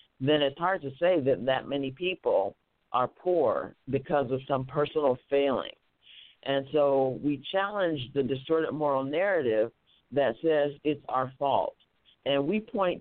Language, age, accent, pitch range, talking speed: English, 50-69, American, 135-155 Hz, 150 wpm